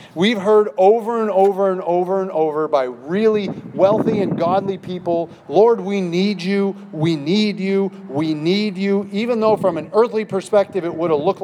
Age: 40-59